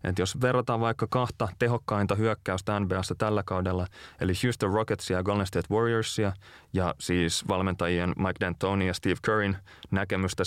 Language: Finnish